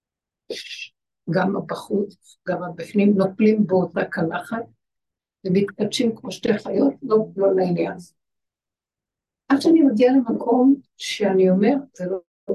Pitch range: 185-230 Hz